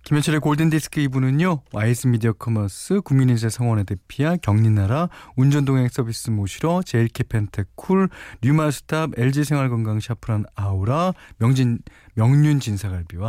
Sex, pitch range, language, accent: male, 100-150 Hz, Korean, native